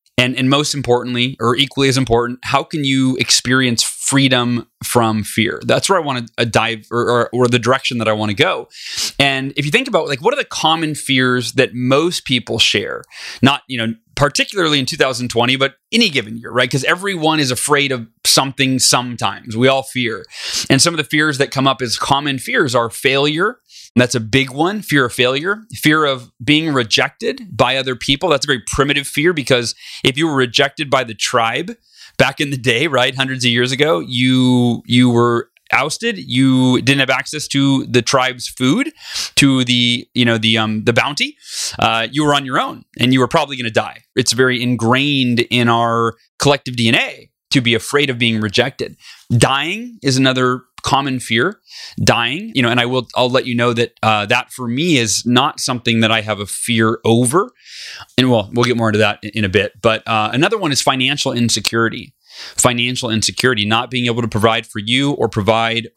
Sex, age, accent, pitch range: male, 30-49, American, 115-140 Hz